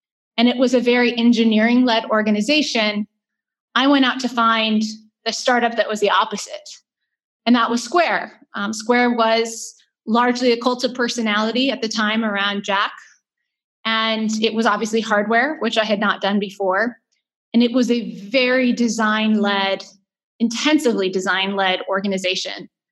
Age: 20-39